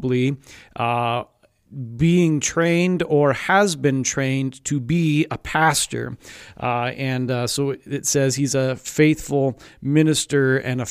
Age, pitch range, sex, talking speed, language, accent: 40-59, 125-155 Hz, male, 125 wpm, English, American